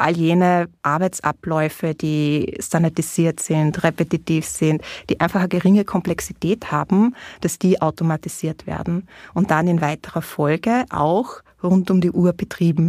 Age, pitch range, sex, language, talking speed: 20-39, 165-195 Hz, female, German, 135 wpm